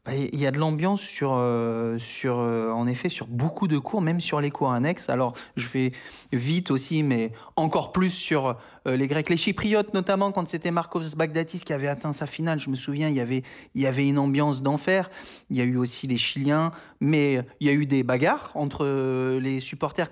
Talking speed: 225 wpm